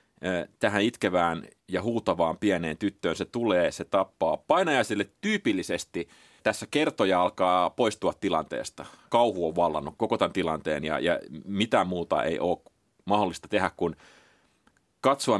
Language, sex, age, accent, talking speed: Finnish, male, 30-49, native, 130 wpm